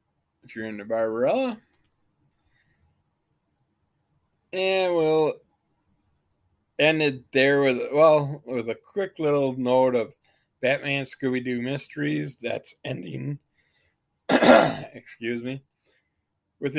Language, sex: English, male